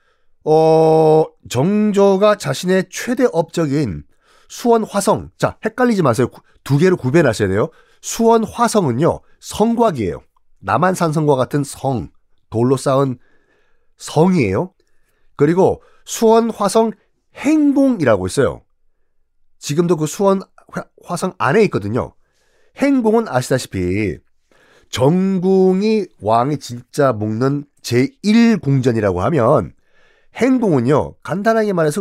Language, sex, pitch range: Korean, male, 130-215 Hz